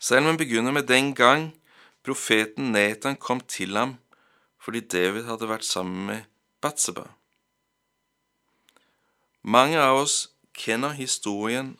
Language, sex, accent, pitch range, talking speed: Danish, male, Swedish, 110-130 Hz, 115 wpm